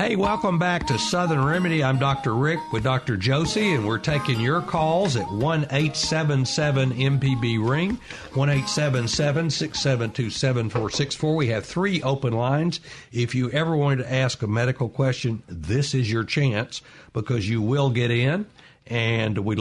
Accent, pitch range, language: American, 115-140 Hz, English